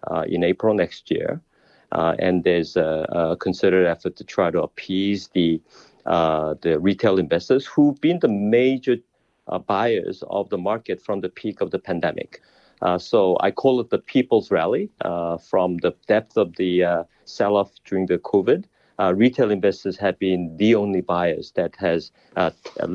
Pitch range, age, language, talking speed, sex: 85-100 Hz, 50-69, English, 170 wpm, male